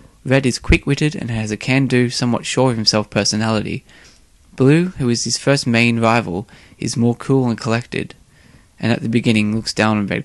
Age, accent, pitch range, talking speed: 20-39, Australian, 105-125 Hz, 175 wpm